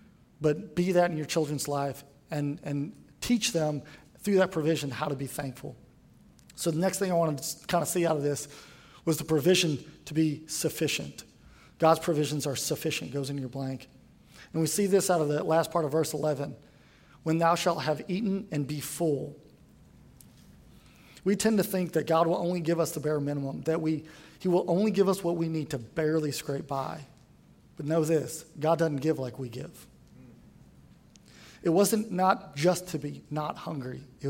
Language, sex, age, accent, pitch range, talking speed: English, male, 40-59, American, 145-175 Hz, 190 wpm